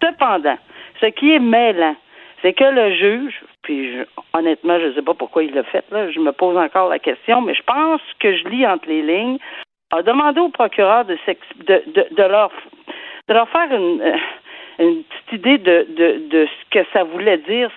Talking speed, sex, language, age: 205 wpm, female, French, 50-69